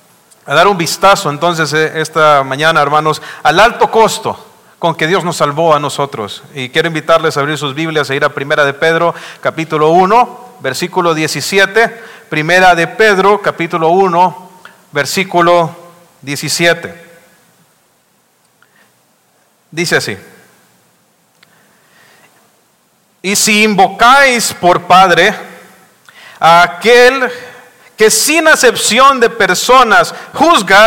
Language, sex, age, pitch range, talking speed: English, male, 40-59, 170-245 Hz, 110 wpm